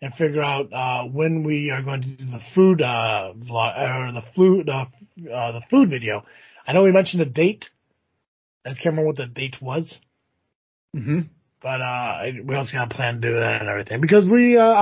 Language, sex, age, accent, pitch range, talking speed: English, male, 30-49, American, 130-170 Hz, 210 wpm